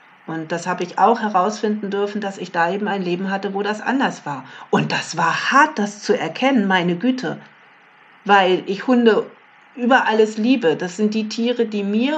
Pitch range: 175-220 Hz